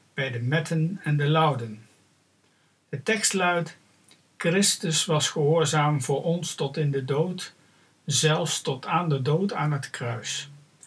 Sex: male